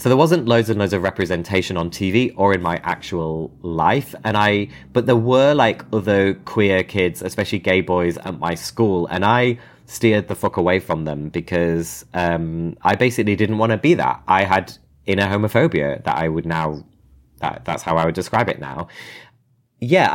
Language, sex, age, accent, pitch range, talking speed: English, male, 20-39, British, 90-115 Hz, 190 wpm